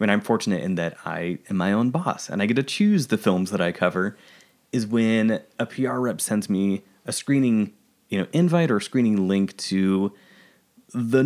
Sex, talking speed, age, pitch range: male, 195 wpm, 20-39, 100-150 Hz